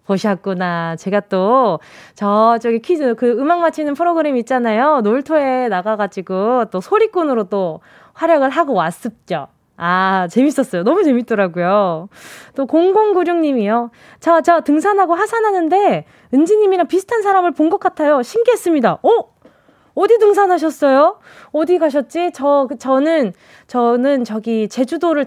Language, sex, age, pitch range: Korean, female, 20-39, 195-320 Hz